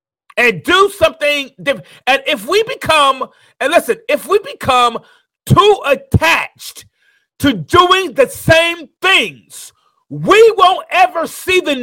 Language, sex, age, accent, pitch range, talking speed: English, male, 40-59, American, 270-370 Hz, 125 wpm